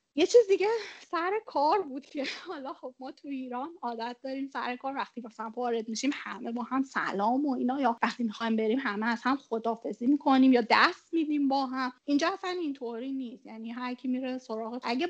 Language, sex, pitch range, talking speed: Persian, female, 230-285 Hz, 195 wpm